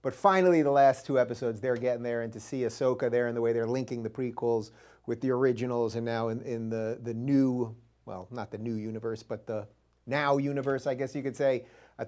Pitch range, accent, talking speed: 120-150 Hz, American, 230 wpm